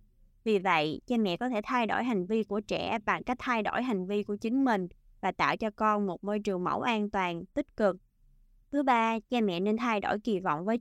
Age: 20-39